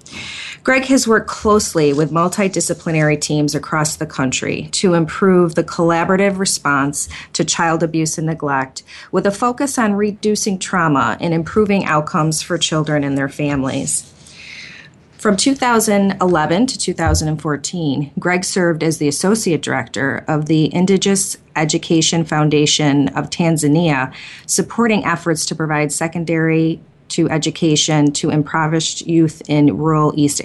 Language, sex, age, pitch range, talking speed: English, female, 30-49, 150-180 Hz, 125 wpm